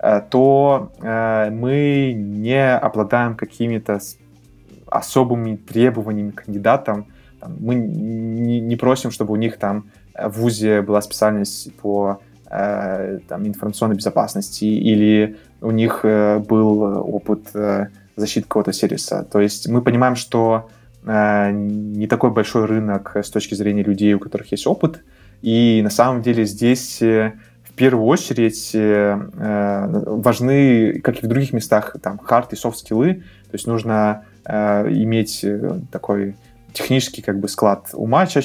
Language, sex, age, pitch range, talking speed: Russian, male, 20-39, 105-120 Hz, 120 wpm